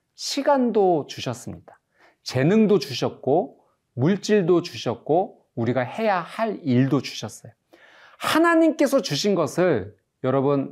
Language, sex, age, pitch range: Korean, male, 40-59, 120-180 Hz